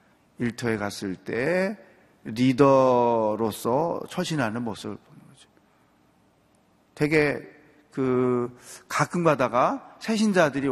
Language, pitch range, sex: Korean, 110-150 Hz, male